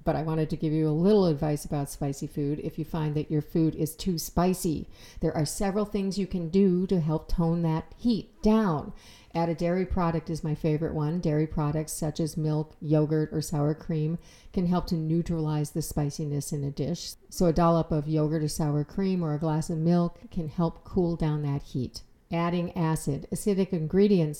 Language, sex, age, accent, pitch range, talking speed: English, female, 50-69, American, 155-180 Hz, 205 wpm